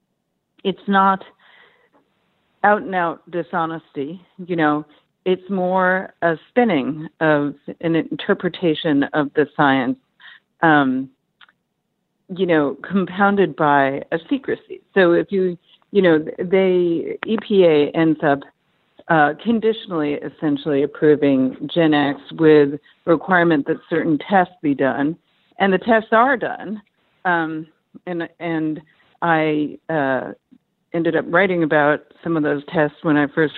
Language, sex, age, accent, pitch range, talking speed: English, female, 50-69, American, 150-190 Hz, 125 wpm